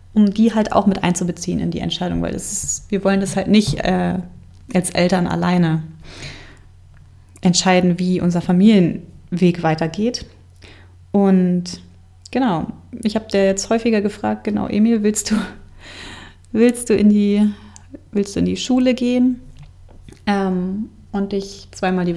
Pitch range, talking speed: 160-210 Hz, 140 wpm